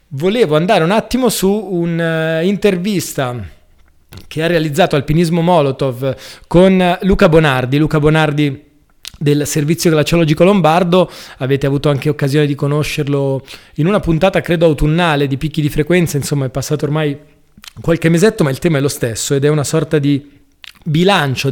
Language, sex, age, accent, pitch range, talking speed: Italian, male, 20-39, native, 140-165 Hz, 150 wpm